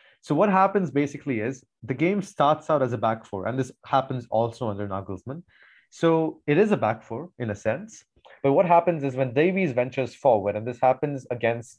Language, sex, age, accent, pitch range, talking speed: English, male, 30-49, Indian, 115-150 Hz, 205 wpm